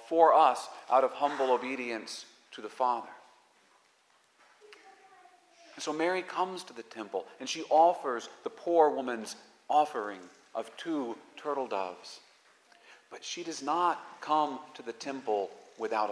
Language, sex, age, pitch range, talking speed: English, male, 40-59, 105-150 Hz, 130 wpm